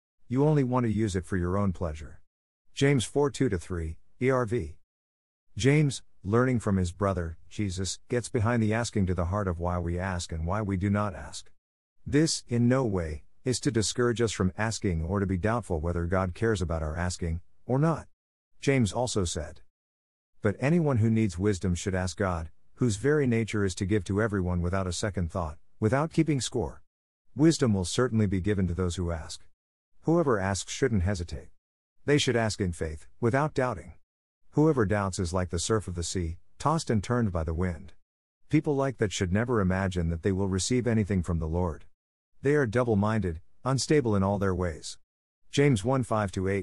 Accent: American